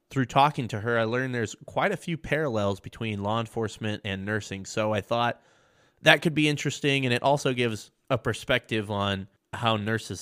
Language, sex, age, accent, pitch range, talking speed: English, male, 20-39, American, 105-130 Hz, 190 wpm